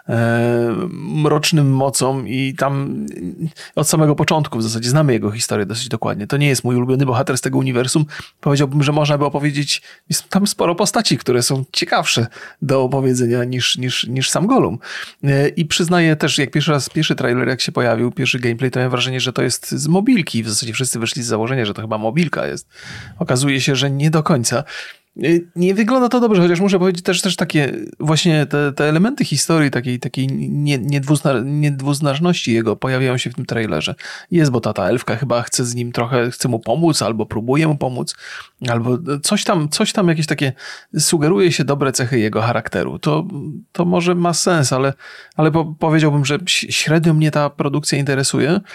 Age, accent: 30-49, native